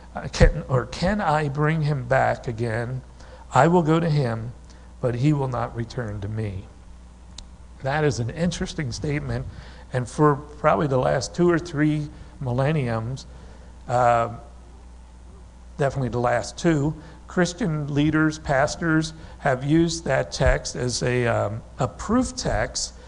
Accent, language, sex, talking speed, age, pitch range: American, English, male, 135 wpm, 60-79, 115-150 Hz